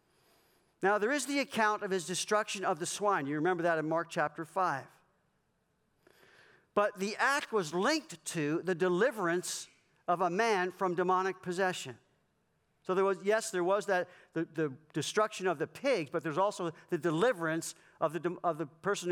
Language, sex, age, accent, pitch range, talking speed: English, male, 50-69, American, 165-205 Hz, 175 wpm